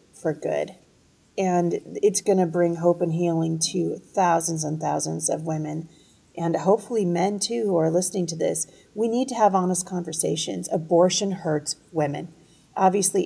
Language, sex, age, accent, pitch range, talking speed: English, female, 40-59, American, 165-205 Hz, 160 wpm